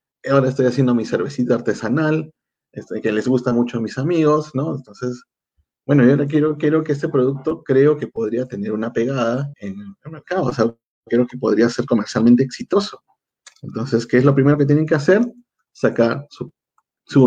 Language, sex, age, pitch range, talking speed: Spanish, male, 40-59, 120-140 Hz, 180 wpm